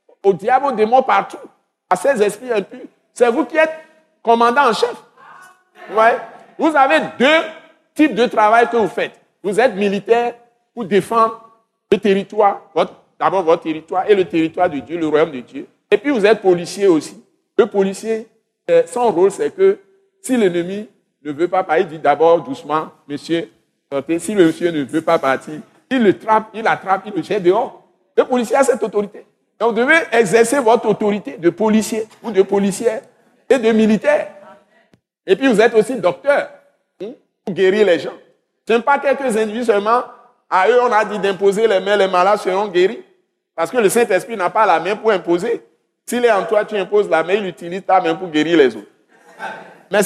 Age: 60-79